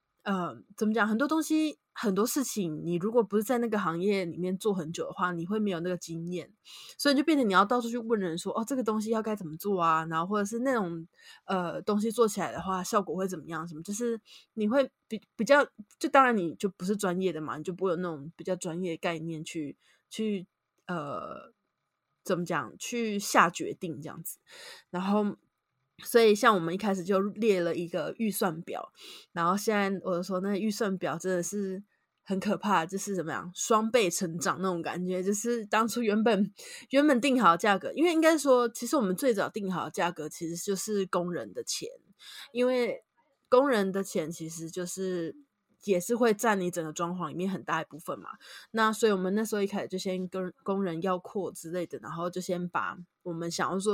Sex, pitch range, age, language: female, 175-220 Hz, 20-39, Chinese